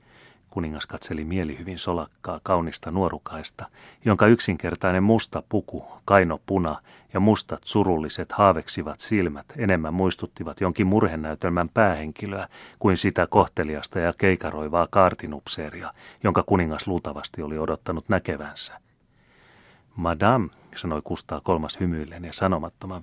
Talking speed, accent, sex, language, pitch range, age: 105 wpm, native, male, Finnish, 80-105 Hz, 30-49